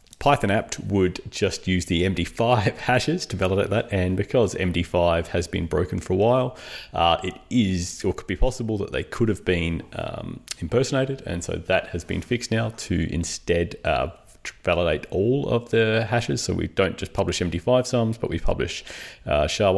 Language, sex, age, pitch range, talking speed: English, male, 30-49, 90-115 Hz, 180 wpm